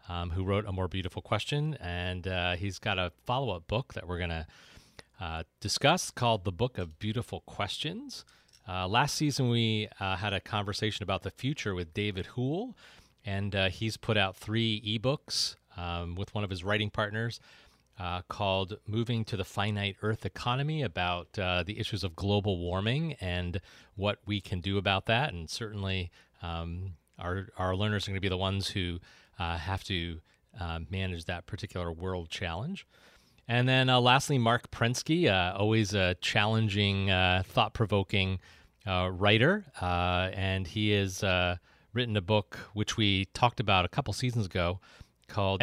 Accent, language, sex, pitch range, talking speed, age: American, English, male, 90-110 Hz, 170 wpm, 40-59